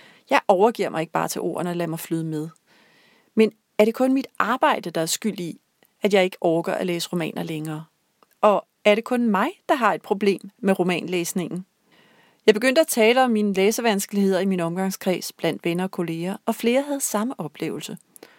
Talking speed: 195 wpm